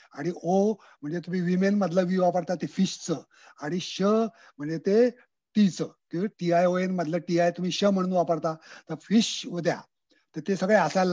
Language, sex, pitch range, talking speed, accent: Marathi, male, 145-190 Hz, 165 wpm, native